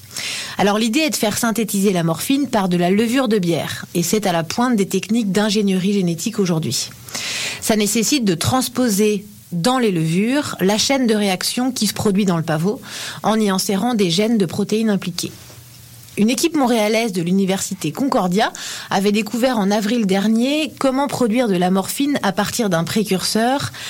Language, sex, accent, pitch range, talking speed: French, female, French, 175-230 Hz, 175 wpm